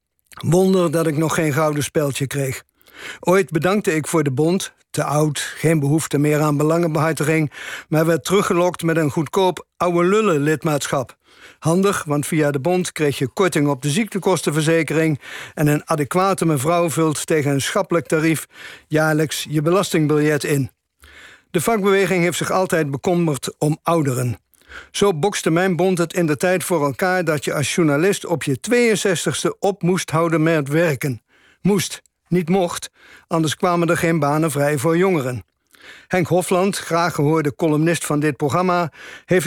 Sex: male